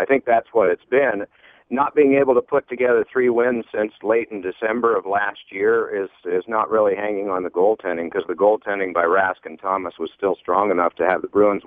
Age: 50-69